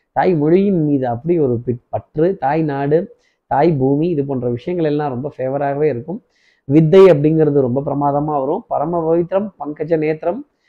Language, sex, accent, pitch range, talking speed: Tamil, male, native, 135-165 Hz, 150 wpm